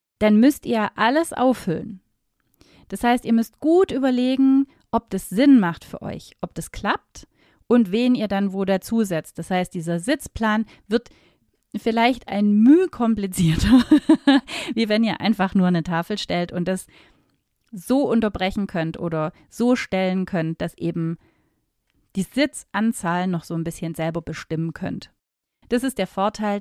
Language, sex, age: German, female, 30-49